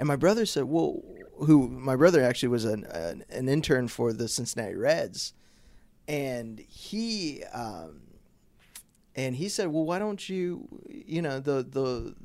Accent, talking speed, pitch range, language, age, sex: American, 155 wpm, 125-170 Hz, English, 20-39, male